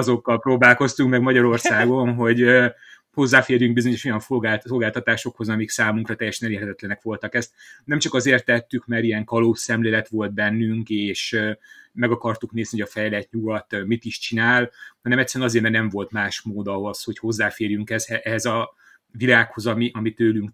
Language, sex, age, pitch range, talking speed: Hungarian, male, 30-49, 110-120 Hz, 150 wpm